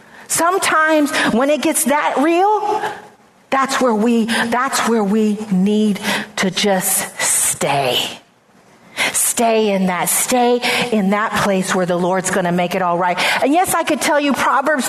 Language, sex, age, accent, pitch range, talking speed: English, female, 40-59, American, 260-335 Hz, 155 wpm